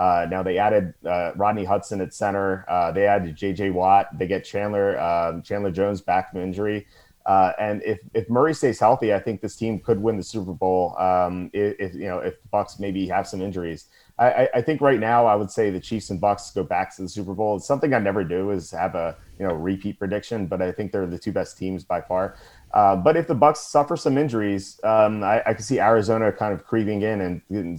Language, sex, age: English, male, 30-49